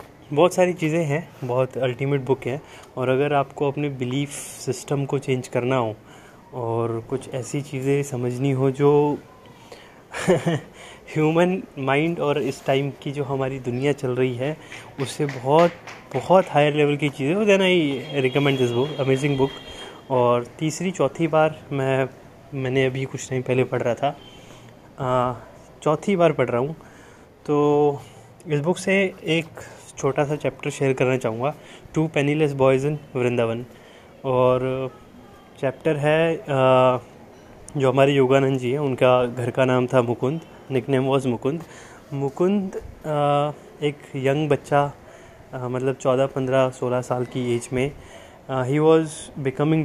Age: 20-39